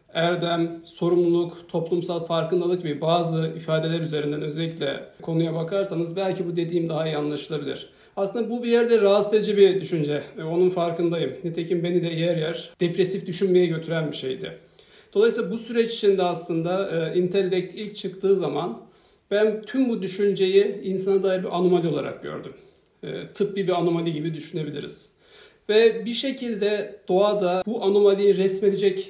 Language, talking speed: Turkish, 140 wpm